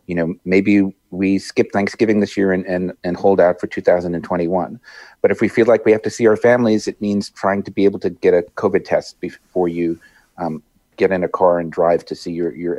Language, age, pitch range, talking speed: English, 40-59, 85-105 Hz, 235 wpm